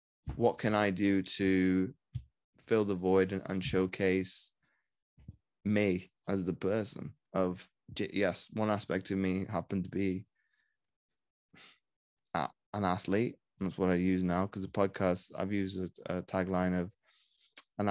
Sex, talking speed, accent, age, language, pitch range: male, 140 wpm, British, 20-39, English, 95-110 Hz